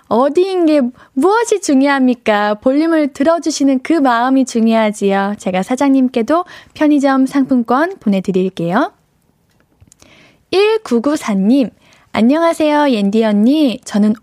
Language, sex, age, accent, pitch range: Korean, female, 10-29, native, 220-300 Hz